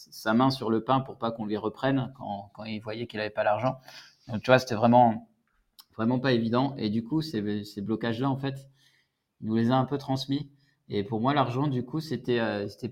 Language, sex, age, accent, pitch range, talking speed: French, male, 20-39, French, 110-130 Hz, 235 wpm